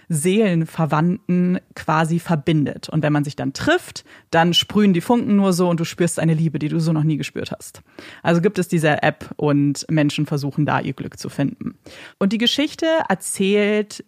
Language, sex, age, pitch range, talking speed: German, female, 30-49, 155-205 Hz, 190 wpm